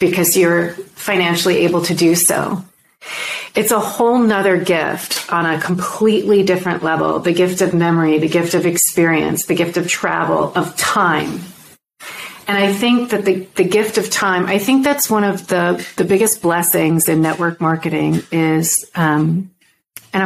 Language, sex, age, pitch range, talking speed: English, female, 40-59, 170-200 Hz, 165 wpm